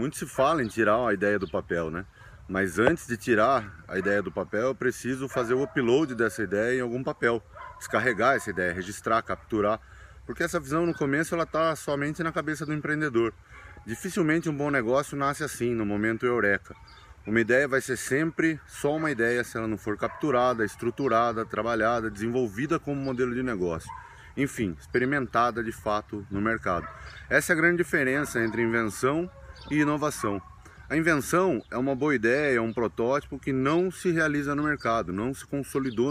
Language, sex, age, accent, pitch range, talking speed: Portuguese, male, 20-39, Brazilian, 105-140 Hz, 180 wpm